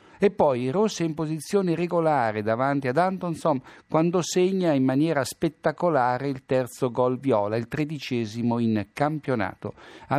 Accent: native